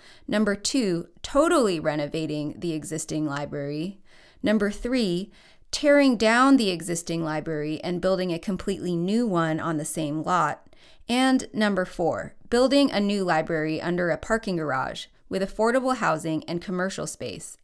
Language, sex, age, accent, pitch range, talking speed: English, female, 30-49, American, 160-230 Hz, 140 wpm